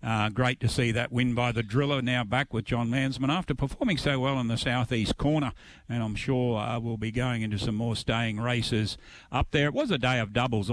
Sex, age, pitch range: male, 60-79, 110-135 Hz